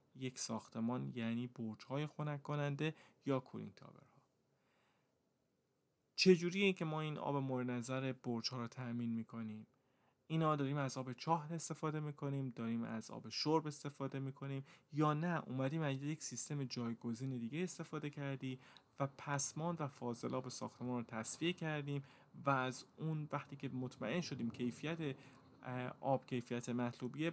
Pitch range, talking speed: 120-150 Hz, 140 wpm